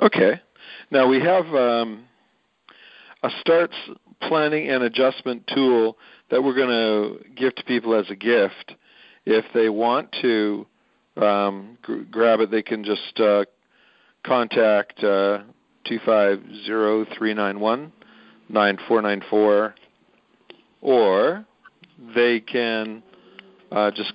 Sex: male